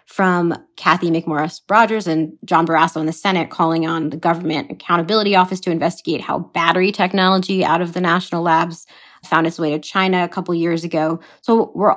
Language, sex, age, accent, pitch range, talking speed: English, female, 20-39, American, 165-190 Hz, 180 wpm